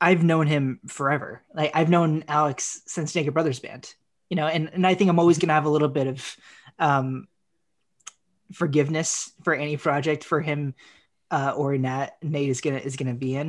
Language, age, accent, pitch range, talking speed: English, 20-39, American, 135-165 Hz, 190 wpm